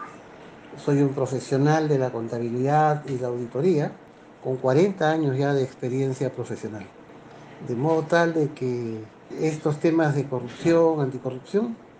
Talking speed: 130 wpm